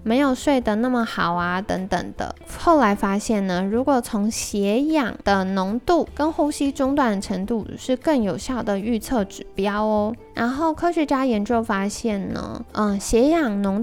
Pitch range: 210-275 Hz